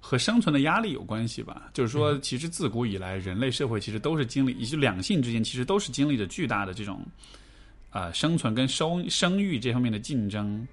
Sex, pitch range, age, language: male, 105-135 Hz, 20-39, Chinese